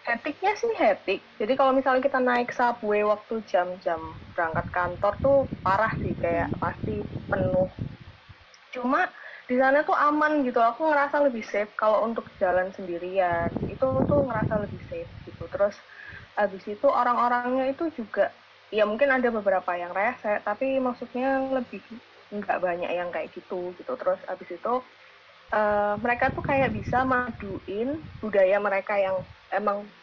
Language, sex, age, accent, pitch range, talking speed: Indonesian, female, 20-39, native, 195-265 Hz, 145 wpm